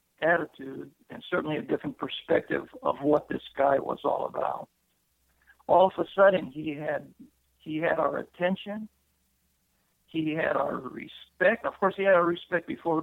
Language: English